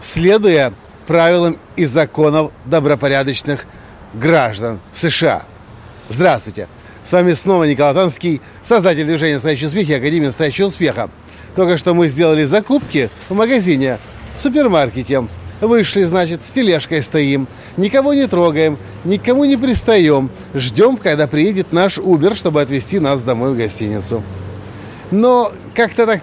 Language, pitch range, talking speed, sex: Russian, 135-190 Hz, 125 wpm, male